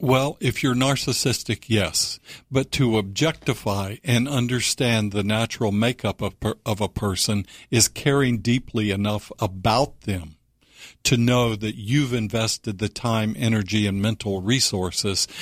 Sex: male